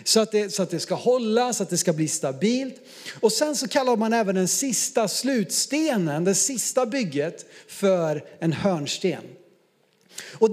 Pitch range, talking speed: 190-245 Hz, 155 wpm